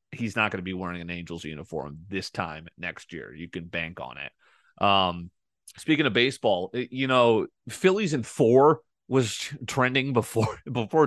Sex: male